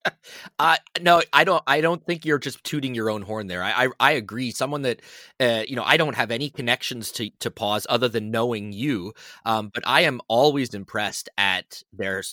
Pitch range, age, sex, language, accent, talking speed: 105-140 Hz, 30-49, male, English, American, 210 wpm